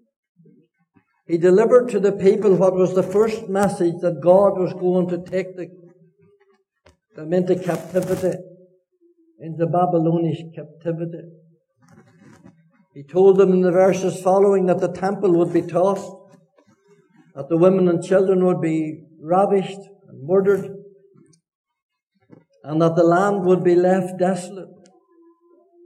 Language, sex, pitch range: English, male, 170-195 Hz